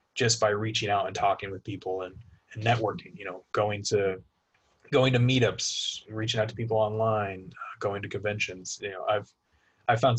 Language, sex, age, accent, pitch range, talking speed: English, male, 20-39, American, 100-120 Hz, 185 wpm